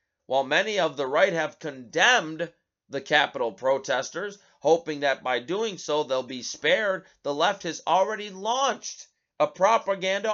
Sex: male